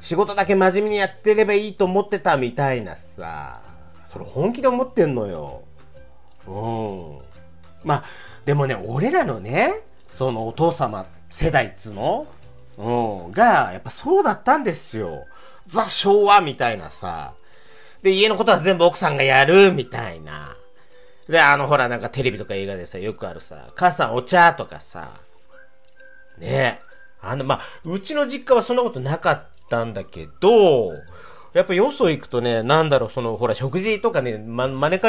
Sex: male